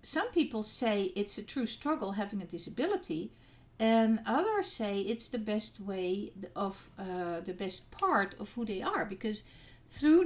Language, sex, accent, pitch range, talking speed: English, female, Dutch, 180-230 Hz, 165 wpm